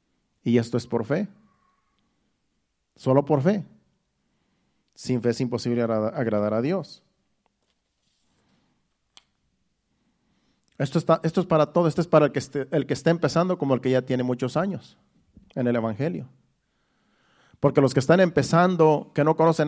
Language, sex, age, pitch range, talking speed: Spanish, male, 40-59, 135-170 Hz, 140 wpm